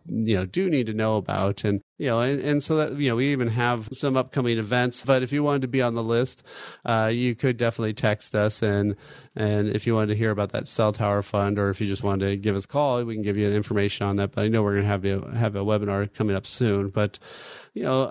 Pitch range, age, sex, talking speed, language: 105-125 Hz, 30-49, male, 275 wpm, English